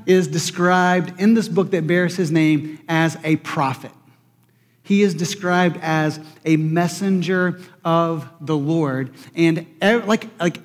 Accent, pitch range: American, 155-200 Hz